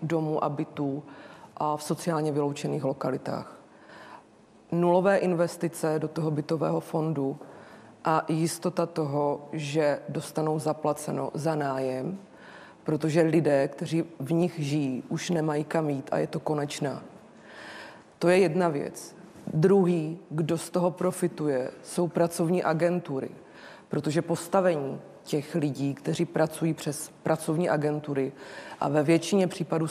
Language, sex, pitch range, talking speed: Czech, female, 150-170 Hz, 120 wpm